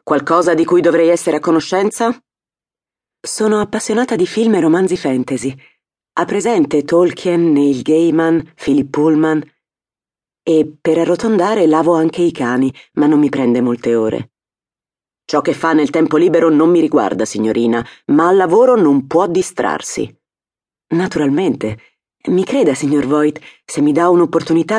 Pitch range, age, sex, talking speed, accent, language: 125-165 Hz, 30-49, female, 145 wpm, native, Italian